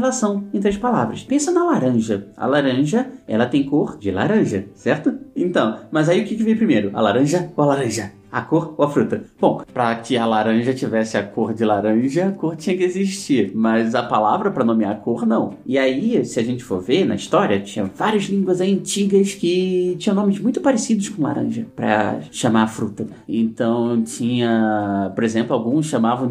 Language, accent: Portuguese, Brazilian